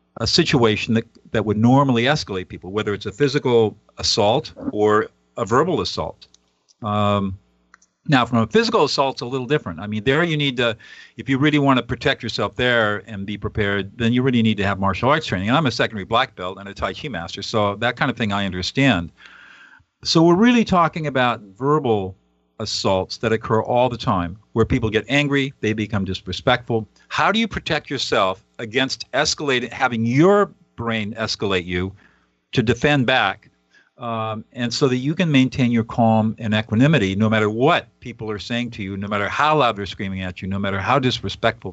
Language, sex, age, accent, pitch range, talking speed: English, male, 50-69, American, 100-130 Hz, 195 wpm